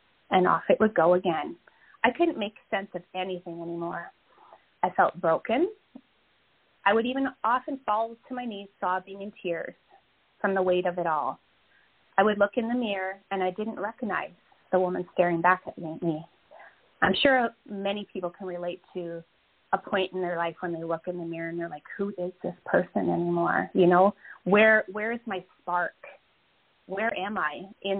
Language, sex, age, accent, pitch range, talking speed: English, female, 30-49, American, 180-230 Hz, 185 wpm